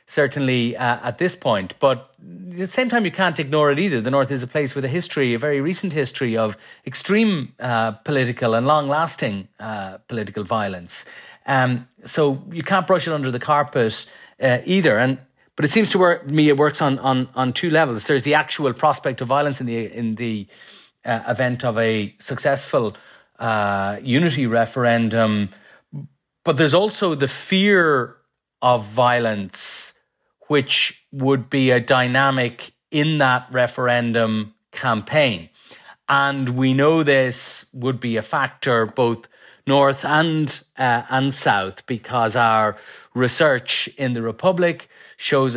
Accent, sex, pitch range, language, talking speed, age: Irish, male, 115-150 Hz, English, 155 wpm, 30-49